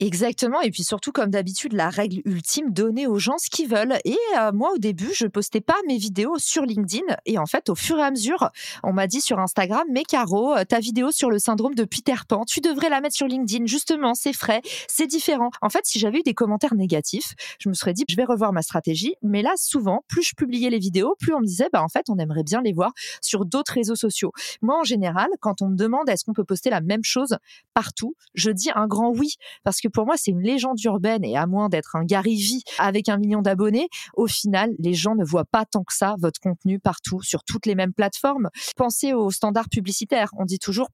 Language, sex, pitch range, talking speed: French, female, 195-255 Hz, 255 wpm